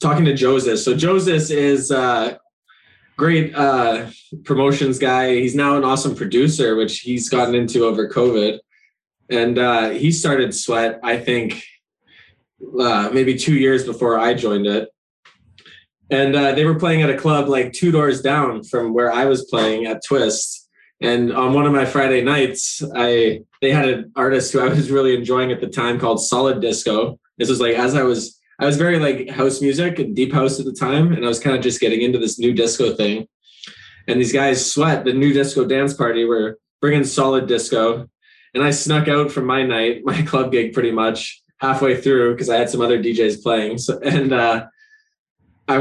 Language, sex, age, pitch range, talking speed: English, male, 20-39, 120-140 Hz, 190 wpm